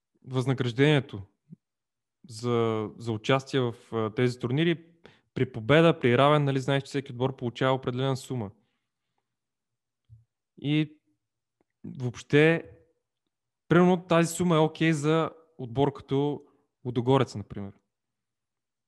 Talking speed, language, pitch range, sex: 100 wpm, Bulgarian, 120-155 Hz, male